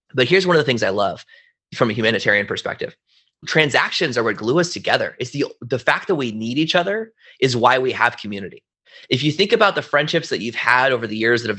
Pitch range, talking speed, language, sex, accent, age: 120-180 Hz, 240 wpm, English, male, American, 30-49